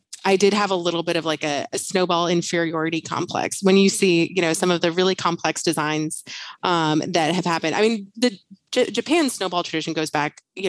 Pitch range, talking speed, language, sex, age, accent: 160-195 Hz, 215 wpm, English, female, 30-49, American